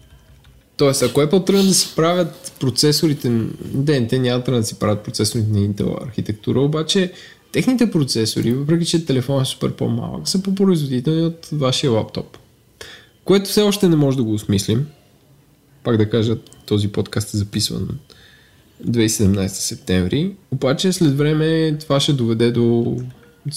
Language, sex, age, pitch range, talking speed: Bulgarian, male, 20-39, 115-150 Hz, 155 wpm